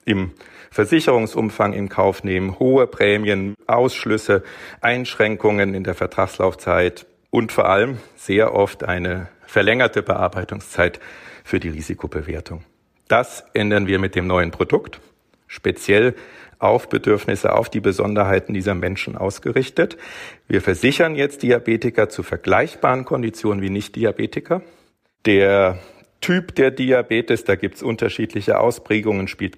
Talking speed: 120 wpm